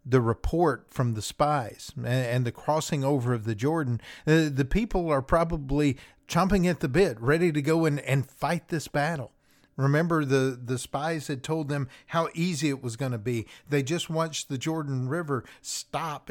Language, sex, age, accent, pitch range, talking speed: English, male, 50-69, American, 130-165 Hz, 180 wpm